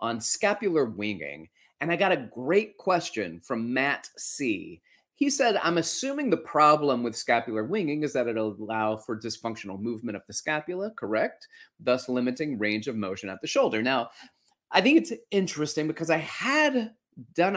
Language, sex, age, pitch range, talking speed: English, male, 30-49, 115-180 Hz, 165 wpm